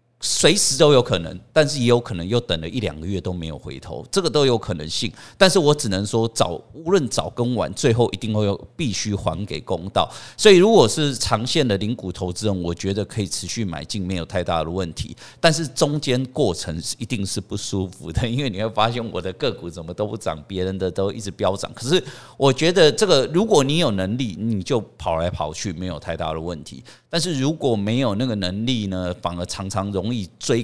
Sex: male